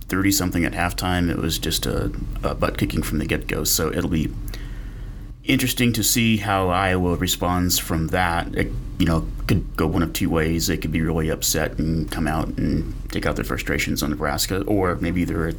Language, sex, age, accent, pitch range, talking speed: English, male, 30-49, American, 80-100 Hz, 190 wpm